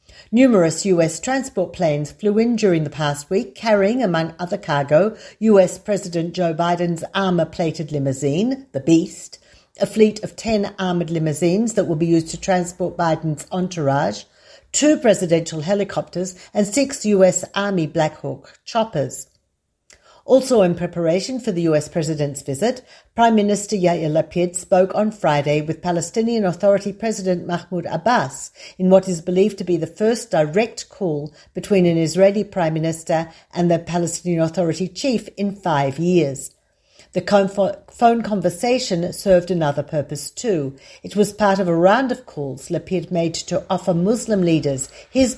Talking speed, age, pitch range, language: 145 wpm, 50-69, 160-200 Hz, English